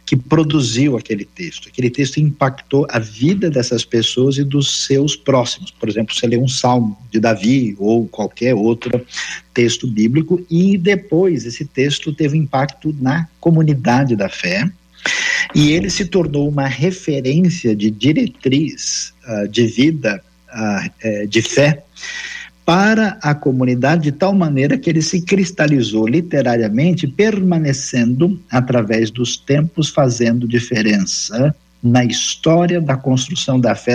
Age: 50-69